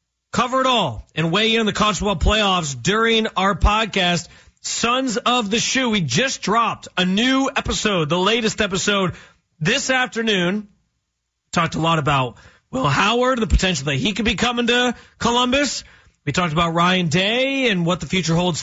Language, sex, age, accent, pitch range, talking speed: English, male, 30-49, American, 160-220 Hz, 170 wpm